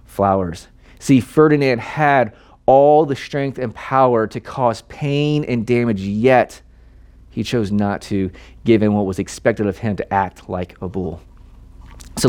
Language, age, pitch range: English, 30-49, 95-130 Hz